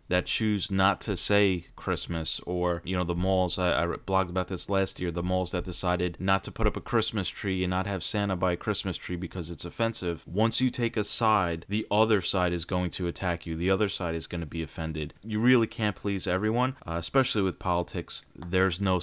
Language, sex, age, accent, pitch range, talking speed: English, male, 30-49, American, 85-100 Hz, 225 wpm